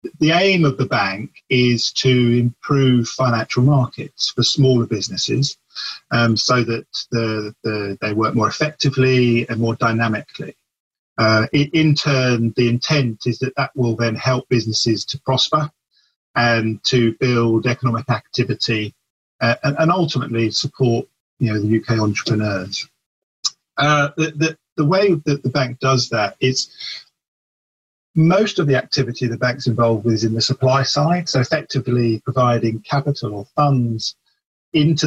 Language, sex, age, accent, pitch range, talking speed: English, male, 40-59, British, 115-140 Hz, 145 wpm